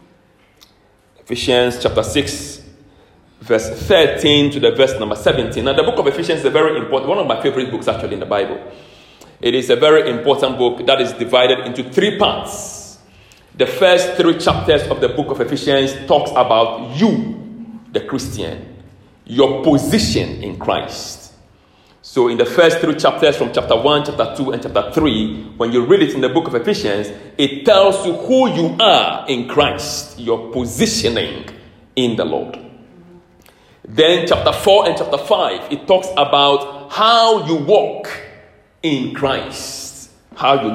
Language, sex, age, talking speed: English, male, 40-59, 160 wpm